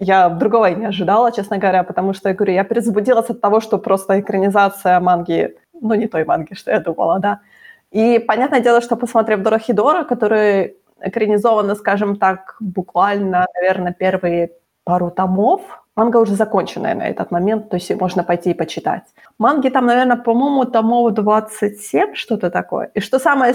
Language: Ukrainian